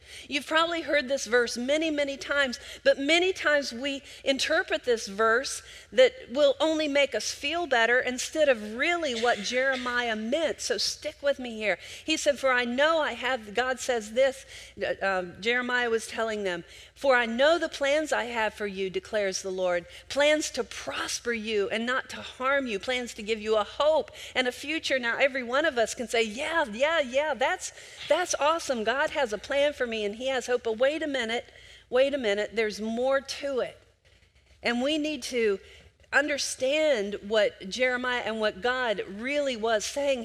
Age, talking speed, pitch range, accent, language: 40-59, 190 wpm, 225-290 Hz, American, English